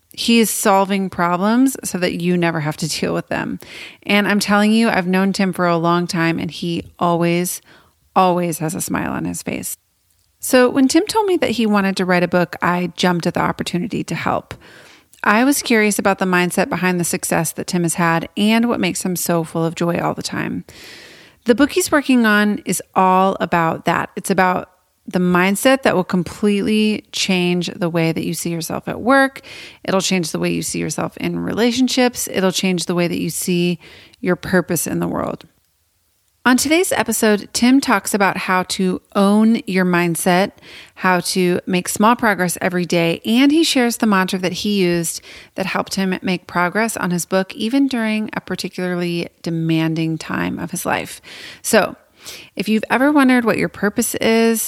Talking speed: 190 wpm